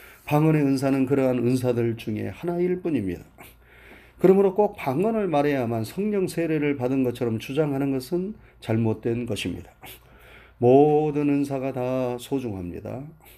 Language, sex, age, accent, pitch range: Korean, male, 30-49, native, 125-170 Hz